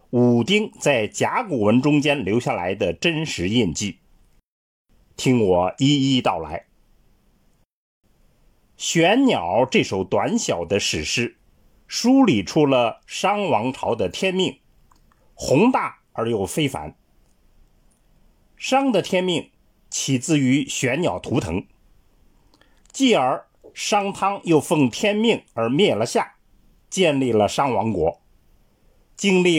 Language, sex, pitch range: Chinese, male, 125-195 Hz